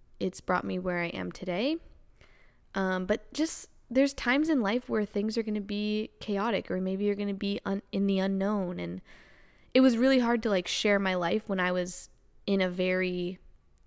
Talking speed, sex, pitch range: 200 wpm, female, 185-215 Hz